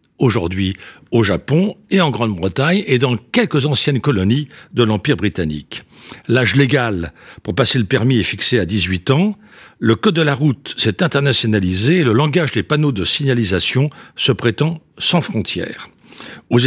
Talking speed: 160 wpm